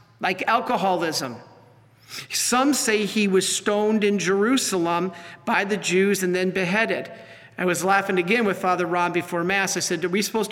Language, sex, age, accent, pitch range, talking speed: English, male, 50-69, American, 170-205 Hz, 165 wpm